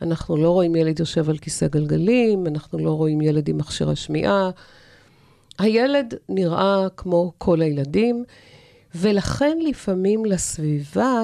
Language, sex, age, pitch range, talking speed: Hebrew, female, 50-69, 160-220 Hz, 125 wpm